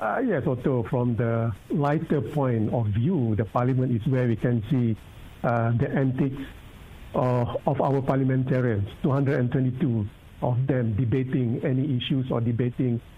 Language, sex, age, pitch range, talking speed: English, male, 60-79, 120-145 Hz, 140 wpm